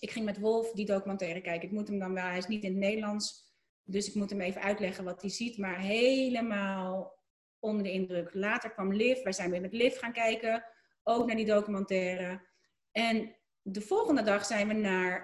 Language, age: Dutch, 30-49